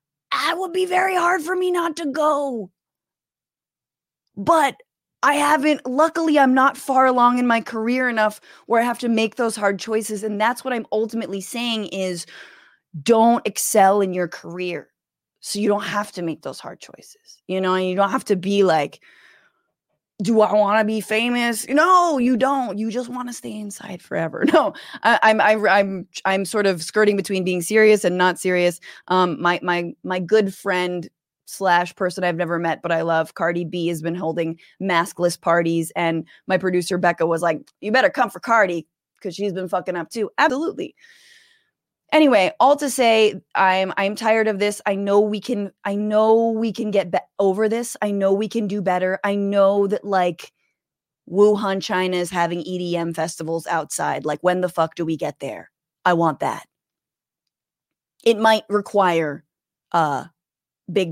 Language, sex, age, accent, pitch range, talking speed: English, female, 20-39, American, 180-245 Hz, 175 wpm